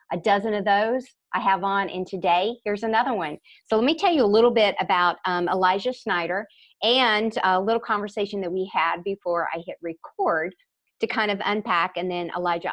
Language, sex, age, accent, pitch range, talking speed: English, female, 50-69, American, 175-225 Hz, 200 wpm